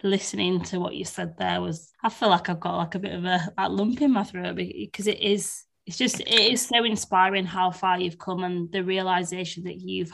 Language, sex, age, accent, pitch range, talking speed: English, female, 20-39, British, 170-190 Hz, 230 wpm